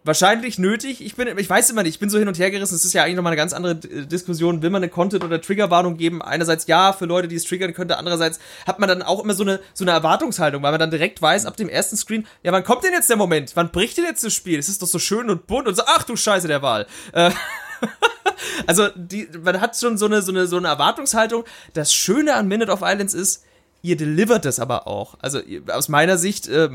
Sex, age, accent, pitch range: male, 30-49, German, 155-190 Hz